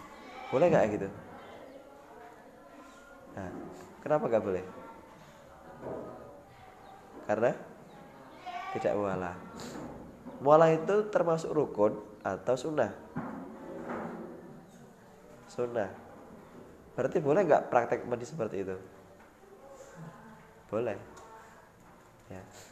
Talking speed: 70 wpm